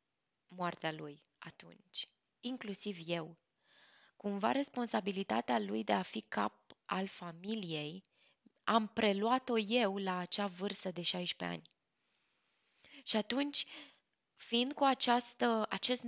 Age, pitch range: 20-39, 180-225 Hz